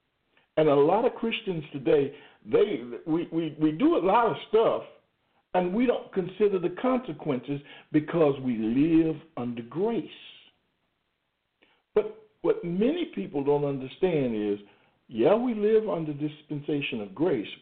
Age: 60-79